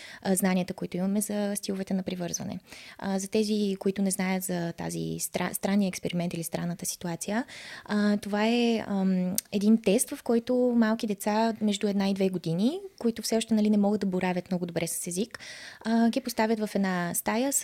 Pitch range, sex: 190-230 Hz, female